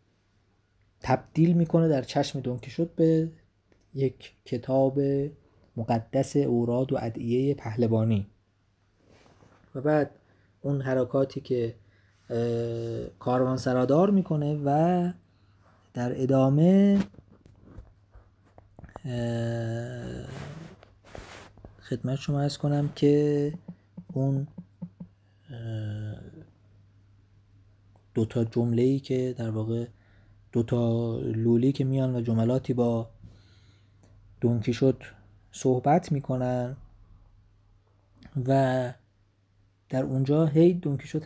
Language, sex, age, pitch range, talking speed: Persian, male, 30-49, 105-135 Hz, 75 wpm